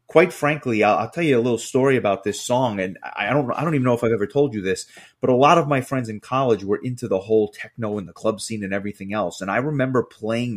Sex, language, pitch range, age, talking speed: male, English, 110-135 Hz, 30-49, 265 wpm